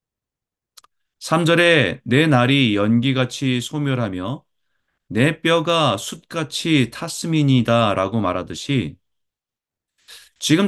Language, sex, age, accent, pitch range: Korean, male, 30-49, native, 105-145 Hz